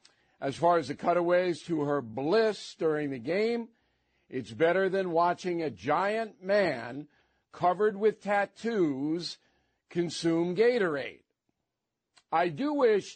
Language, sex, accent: English, male, American